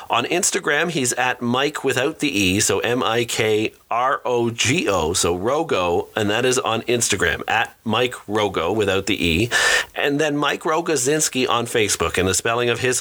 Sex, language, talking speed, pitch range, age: male, English, 155 wpm, 115-150 Hz, 40-59